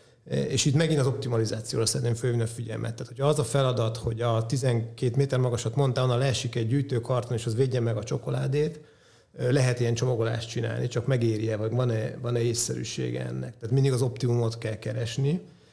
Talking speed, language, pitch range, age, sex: 180 wpm, Hungarian, 115-130 Hz, 30-49, male